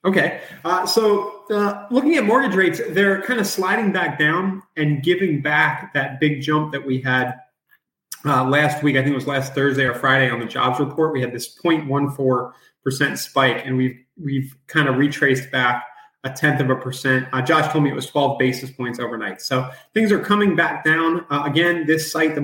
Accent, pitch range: American, 130-165 Hz